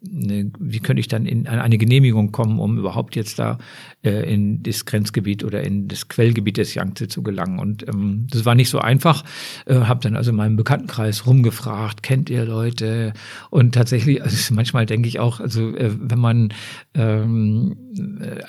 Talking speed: 180 wpm